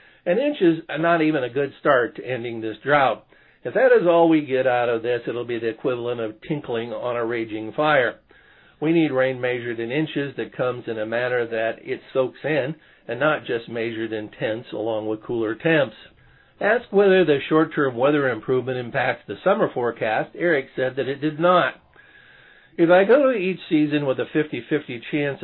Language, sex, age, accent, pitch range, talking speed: English, male, 50-69, American, 120-160 Hz, 195 wpm